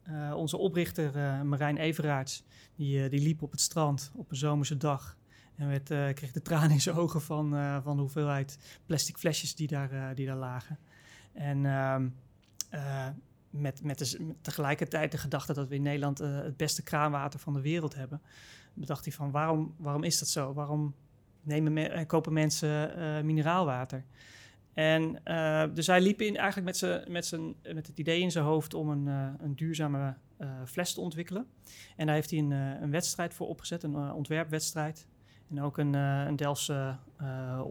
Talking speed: 185 wpm